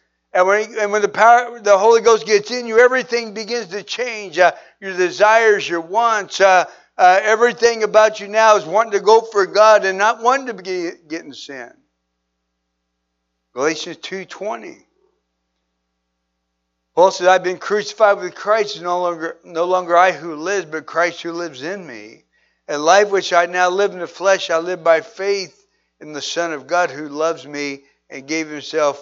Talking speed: 180 wpm